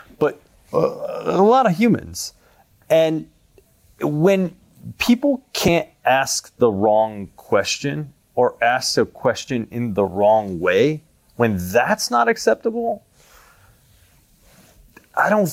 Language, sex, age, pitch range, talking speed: English, male, 30-49, 105-160 Hz, 105 wpm